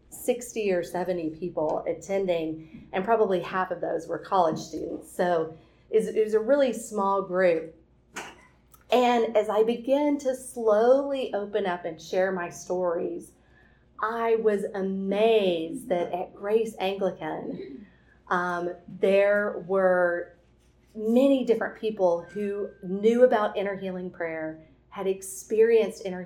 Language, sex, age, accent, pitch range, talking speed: English, female, 40-59, American, 170-200 Hz, 125 wpm